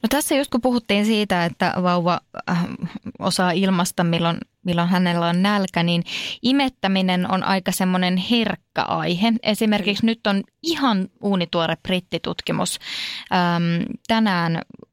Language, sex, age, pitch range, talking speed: Finnish, female, 20-39, 170-205 Hz, 115 wpm